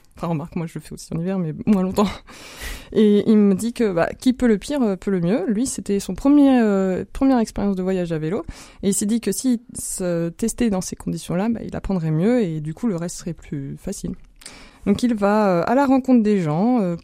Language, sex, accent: French, female, French